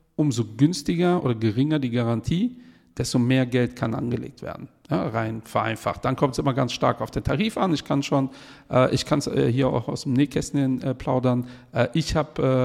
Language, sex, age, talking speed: German, male, 50-69, 180 wpm